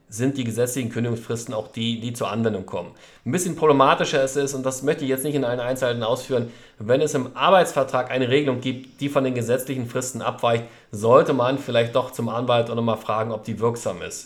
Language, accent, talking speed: German, German, 215 wpm